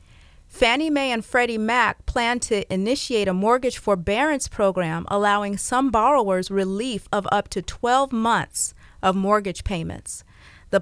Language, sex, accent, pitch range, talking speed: English, female, American, 195-240 Hz, 140 wpm